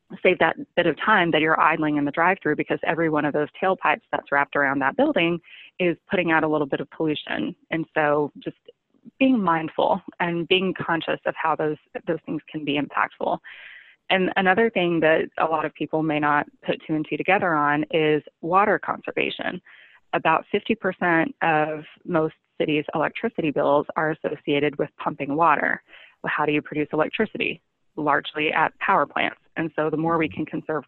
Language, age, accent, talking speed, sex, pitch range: English, 20-39, American, 185 wpm, female, 150-175 Hz